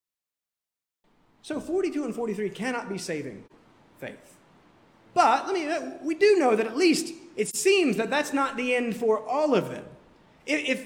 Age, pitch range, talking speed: 30-49, 185-255 Hz, 160 wpm